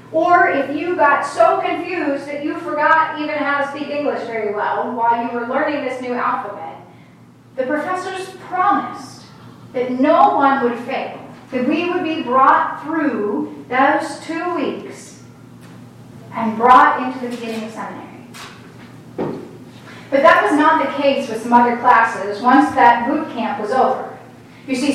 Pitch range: 255-320 Hz